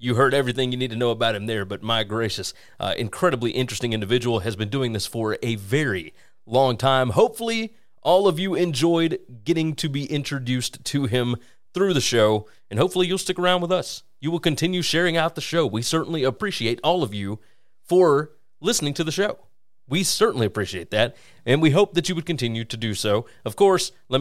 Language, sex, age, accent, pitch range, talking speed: English, male, 30-49, American, 115-160 Hz, 205 wpm